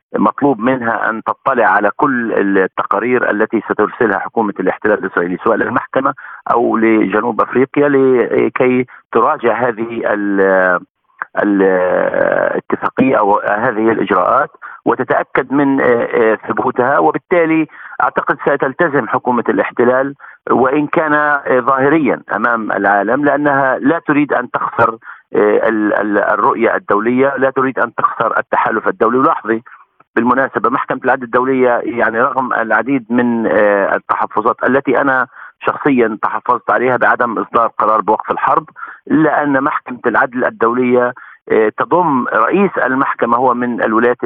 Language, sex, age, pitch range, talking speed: Arabic, male, 50-69, 115-150 Hz, 105 wpm